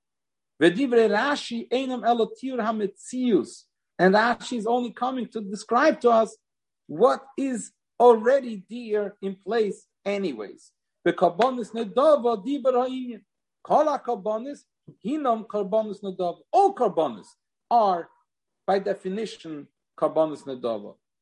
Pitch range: 185-245 Hz